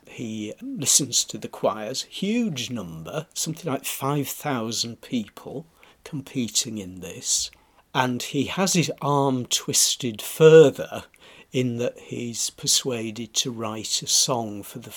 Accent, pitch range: British, 110-140 Hz